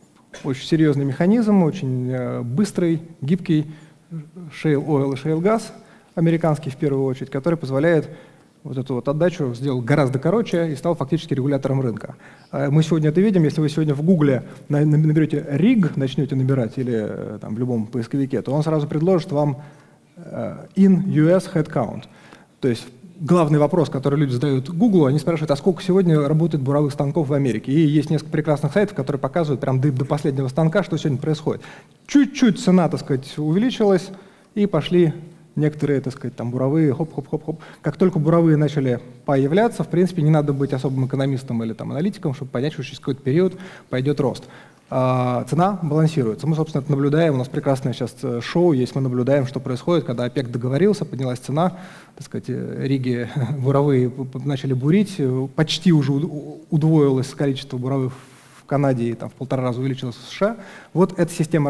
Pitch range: 135-170 Hz